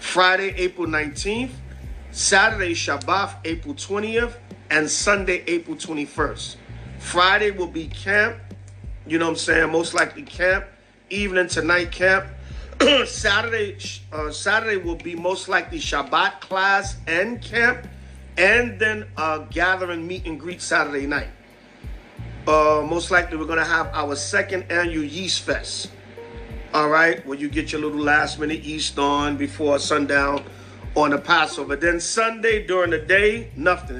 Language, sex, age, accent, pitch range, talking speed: English, male, 40-59, American, 120-180 Hz, 140 wpm